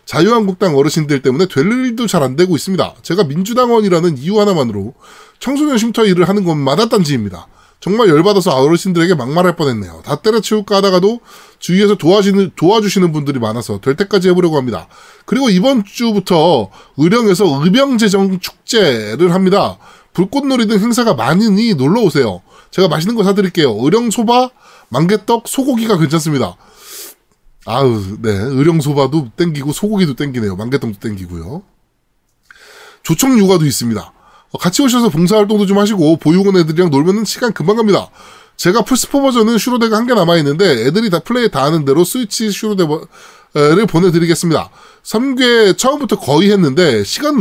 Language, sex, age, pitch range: Korean, male, 20-39, 155-225 Hz